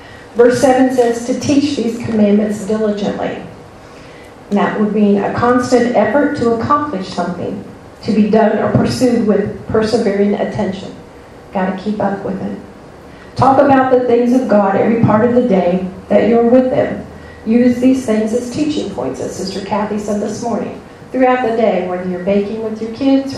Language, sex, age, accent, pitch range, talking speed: English, female, 40-59, American, 205-240 Hz, 175 wpm